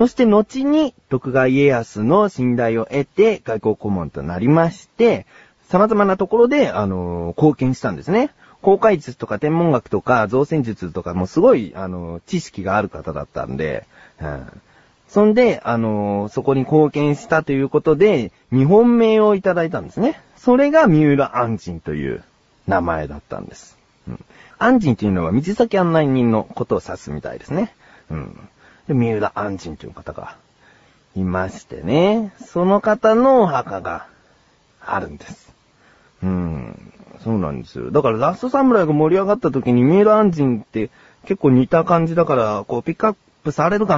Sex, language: male, Japanese